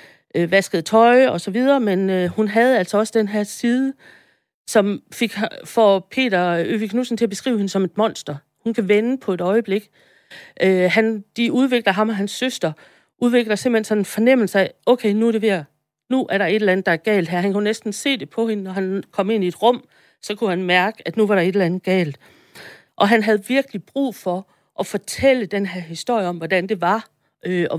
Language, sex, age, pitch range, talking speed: Danish, female, 40-59, 190-235 Hz, 225 wpm